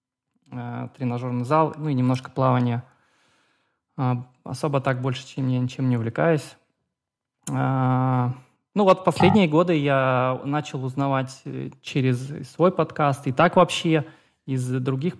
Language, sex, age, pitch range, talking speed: Russian, male, 20-39, 125-155 Hz, 115 wpm